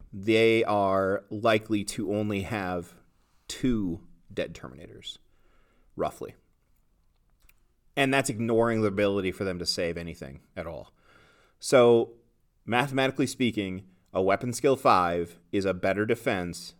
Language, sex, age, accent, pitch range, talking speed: English, male, 30-49, American, 90-115 Hz, 120 wpm